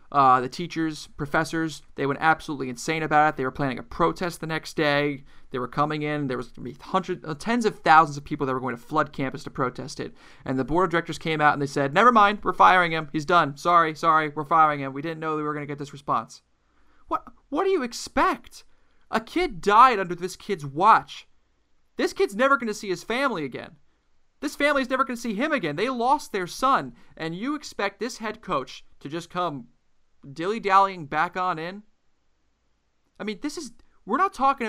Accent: American